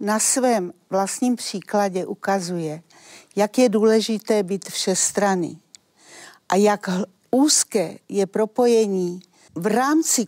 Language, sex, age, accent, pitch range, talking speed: Czech, female, 50-69, native, 185-235 Hz, 105 wpm